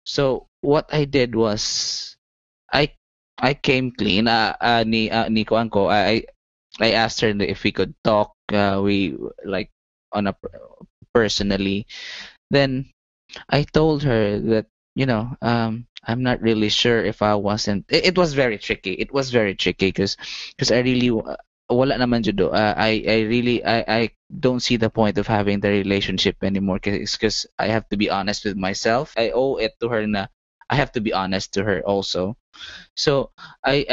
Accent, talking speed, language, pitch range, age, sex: native, 170 wpm, Filipino, 100-120 Hz, 20-39, male